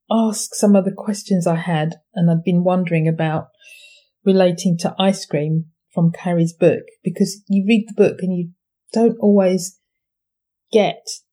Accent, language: British, English